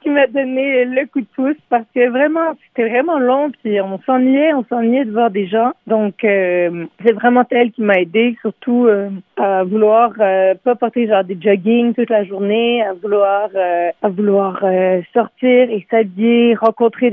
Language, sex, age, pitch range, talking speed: French, female, 40-59, 215-260 Hz, 180 wpm